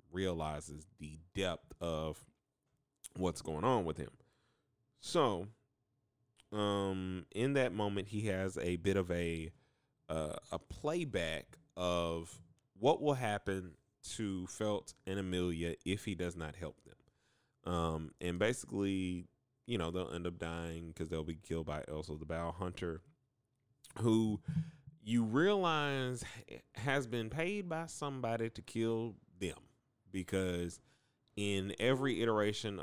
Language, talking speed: English, 130 wpm